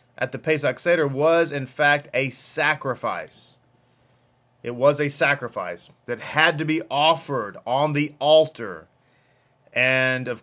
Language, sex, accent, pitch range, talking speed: English, male, American, 125-150 Hz, 130 wpm